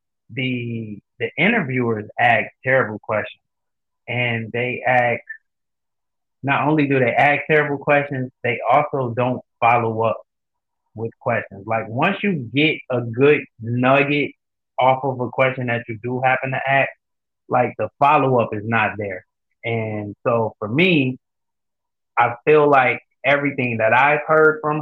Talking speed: 140 wpm